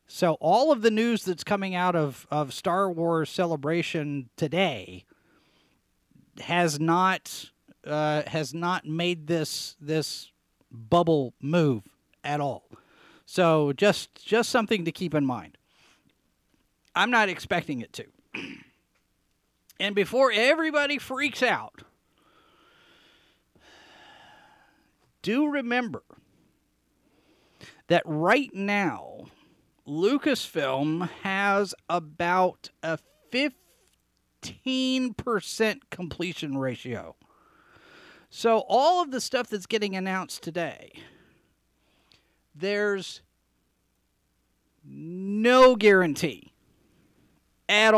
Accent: American